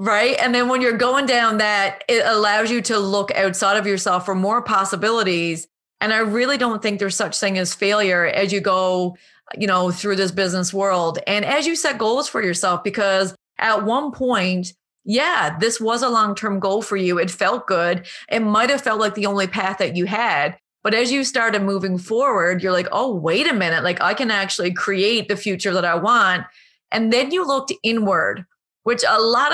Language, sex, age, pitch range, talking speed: English, female, 30-49, 190-230 Hz, 205 wpm